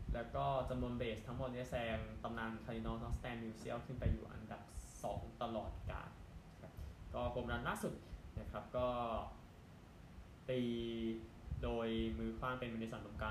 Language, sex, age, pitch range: Thai, male, 10-29, 105-125 Hz